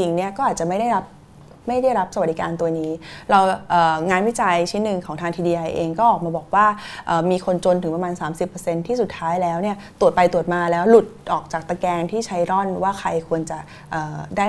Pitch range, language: 170-215 Hz, Thai